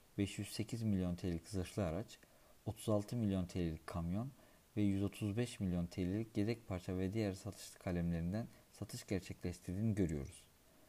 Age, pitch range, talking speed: 50-69, 90-105 Hz, 120 wpm